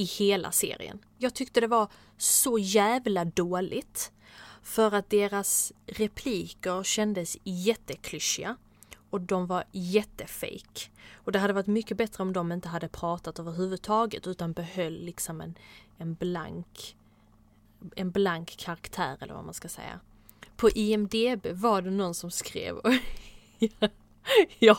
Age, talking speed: 20-39, 130 wpm